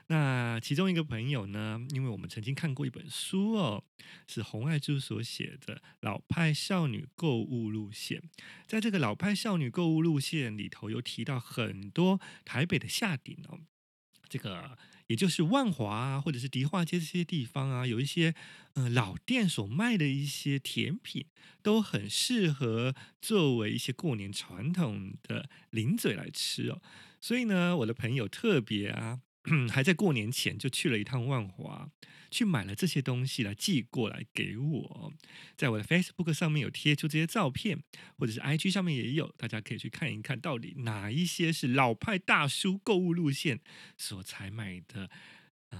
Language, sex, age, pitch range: Chinese, male, 30-49, 120-175 Hz